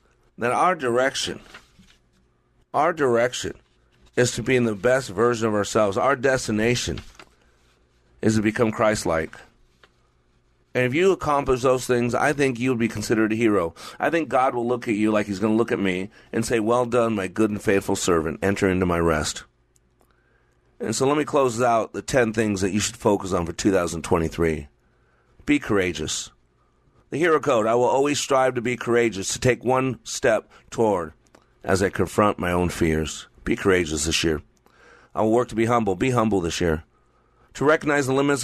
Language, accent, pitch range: English, American, 85-125 Hz